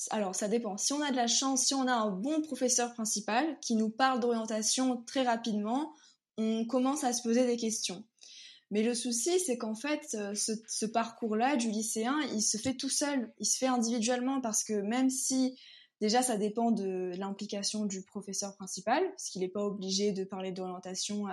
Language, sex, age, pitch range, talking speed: French, female, 20-39, 195-250 Hz, 195 wpm